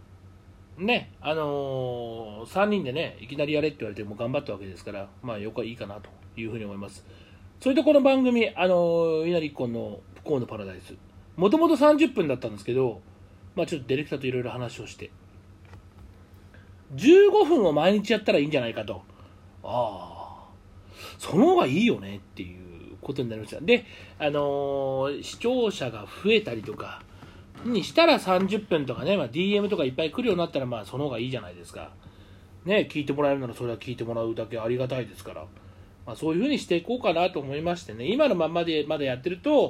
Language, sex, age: Japanese, male, 40-59